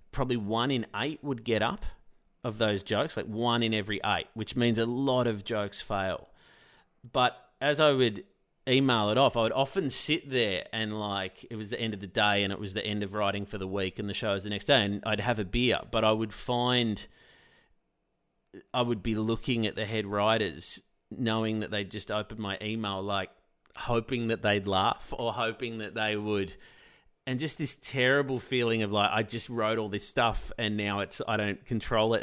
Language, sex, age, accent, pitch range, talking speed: English, male, 30-49, Australian, 105-125 Hz, 210 wpm